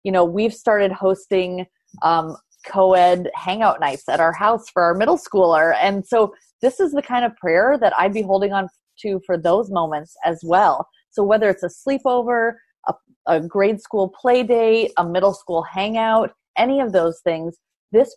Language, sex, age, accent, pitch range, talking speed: English, female, 30-49, American, 170-210 Hz, 180 wpm